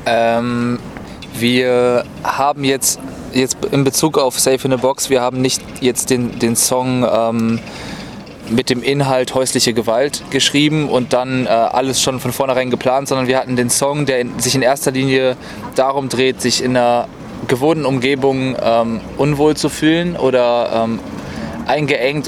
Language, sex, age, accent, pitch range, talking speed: German, male, 20-39, German, 125-140 Hz, 160 wpm